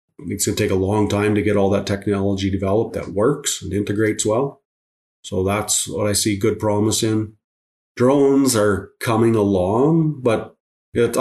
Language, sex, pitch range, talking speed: English, male, 95-105 Hz, 160 wpm